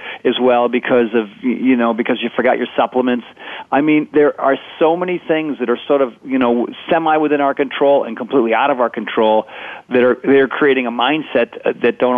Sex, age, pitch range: male, 40-59, 115-130 Hz